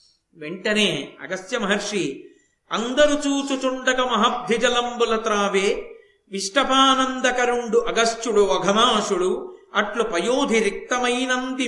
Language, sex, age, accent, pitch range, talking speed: Telugu, male, 50-69, native, 205-255 Hz, 60 wpm